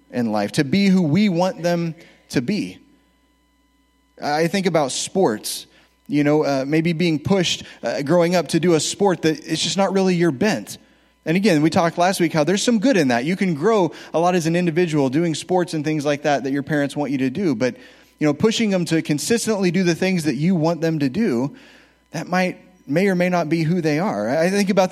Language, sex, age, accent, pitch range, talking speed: English, male, 30-49, American, 145-185 Hz, 230 wpm